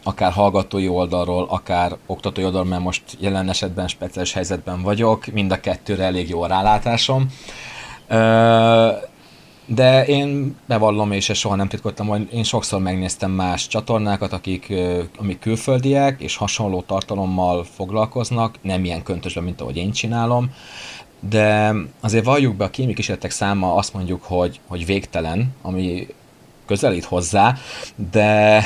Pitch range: 95-115 Hz